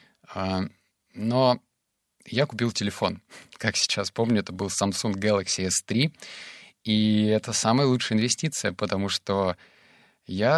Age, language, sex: 20-39, Russian, male